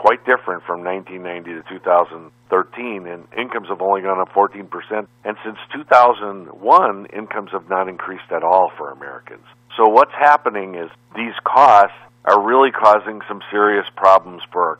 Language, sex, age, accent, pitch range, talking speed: English, male, 50-69, American, 90-110 Hz, 155 wpm